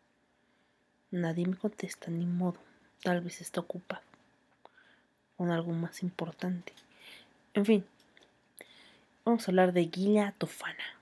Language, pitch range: Spanish, 170-210 Hz